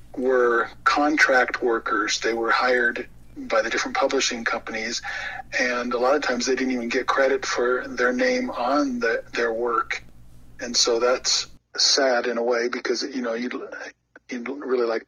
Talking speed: 165 wpm